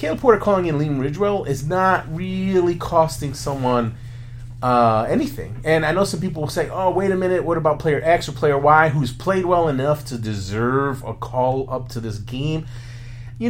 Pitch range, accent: 120-170 Hz, American